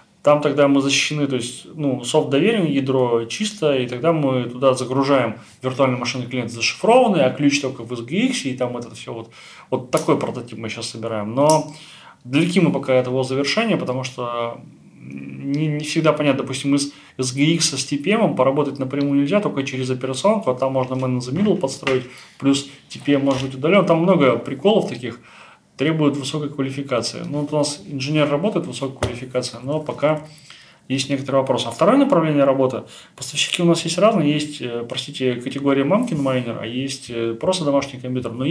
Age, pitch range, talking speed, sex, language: 20-39, 130-155 Hz, 175 wpm, male, Russian